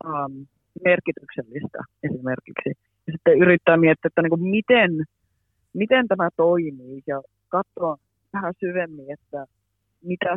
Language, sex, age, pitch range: Finnish, female, 30-49, 140-185 Hz